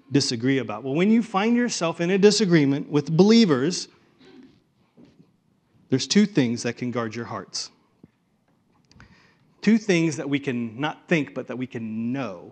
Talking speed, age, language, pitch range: 155 wpm, 40-59, English, 135-180 Hz